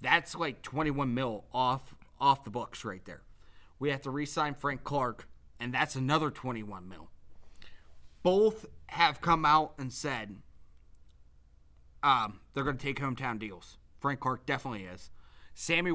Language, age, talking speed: English, 30-49, 145 wpm